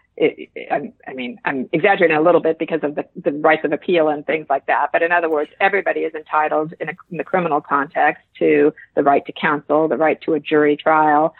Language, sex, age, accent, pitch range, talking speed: English, female, 50-69, American, 155-190 Hz, 235 wpm